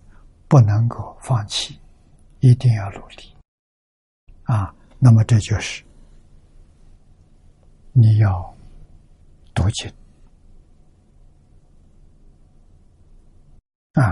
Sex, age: male, 60-79